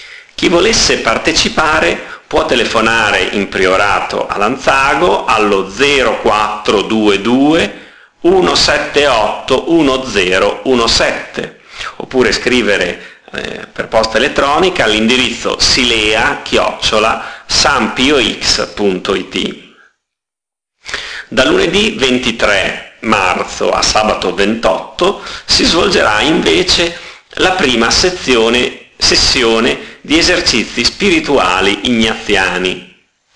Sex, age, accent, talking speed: male, 40-59, native, 70 wpm